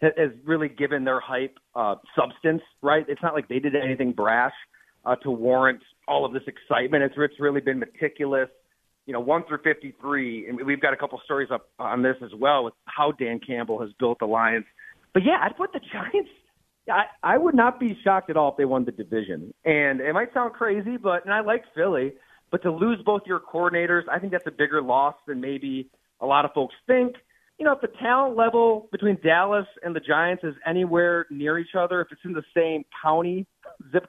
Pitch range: 145-205 Hz